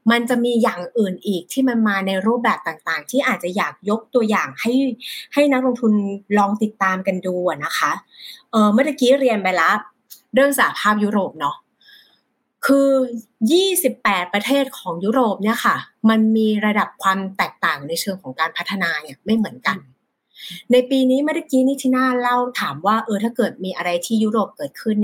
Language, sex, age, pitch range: Thai, female, 30-49, 200-255 Hz